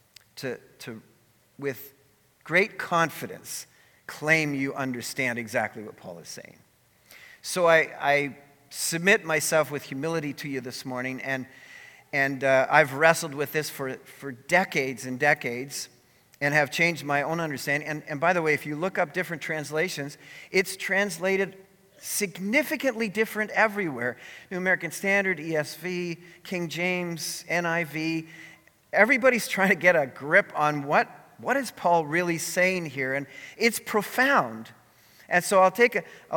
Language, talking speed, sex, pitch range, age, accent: English, 145 wpm, male, 145-195 Hz, 40-59, American